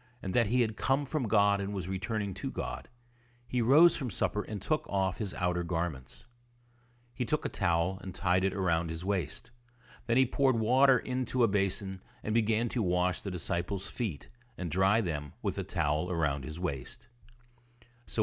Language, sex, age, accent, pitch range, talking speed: English, male, 50-69, American, 90-120 Hz, 185 wpm